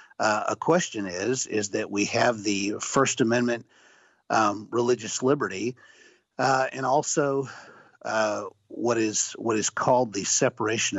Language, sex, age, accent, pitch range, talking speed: English, male, 50-69, American, 105-130 Hz, 135 wpm